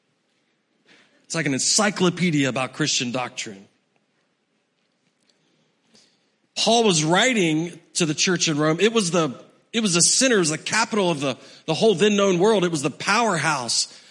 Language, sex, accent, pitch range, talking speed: English, male, American, 170-210 Hz, 150 wpm